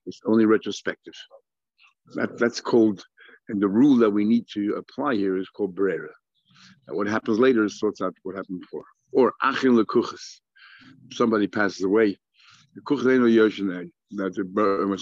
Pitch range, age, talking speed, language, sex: 95-115 Hz, 60-79, 145 wpm, English, male